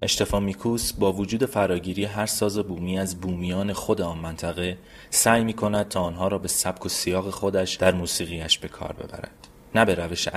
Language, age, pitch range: Persian, 30-49, 90-110 Hz